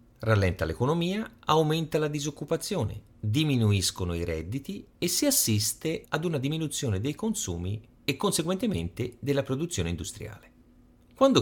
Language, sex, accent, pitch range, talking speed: Italian, male, native, 95-135 Hz, 115 wpm